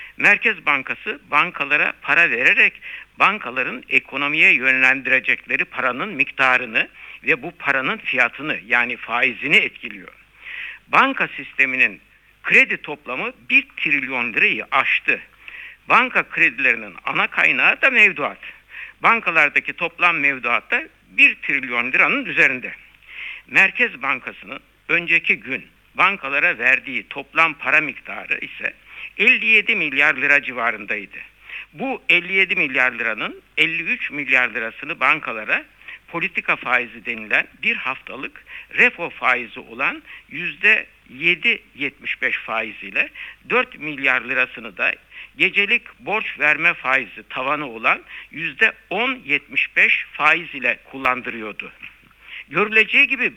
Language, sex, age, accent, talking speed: Turkish, male, 60-79, native, 100 wpm